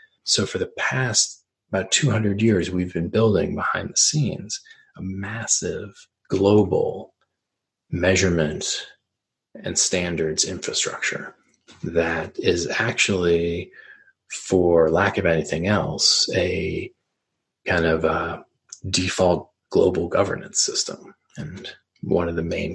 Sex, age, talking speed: male, 40-59, 105 wpm